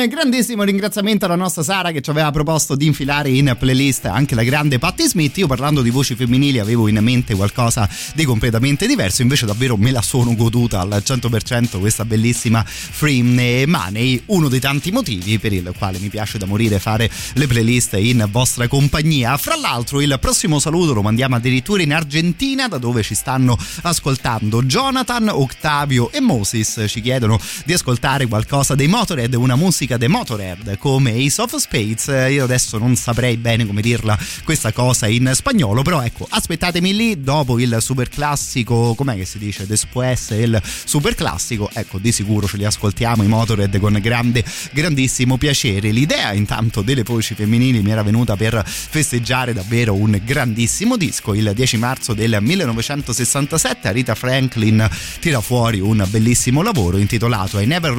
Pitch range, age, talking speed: 110-140 Hz, 30-49, 165 wpm